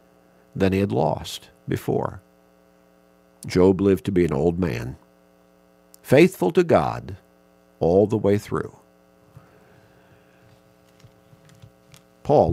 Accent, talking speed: American, 95 wpm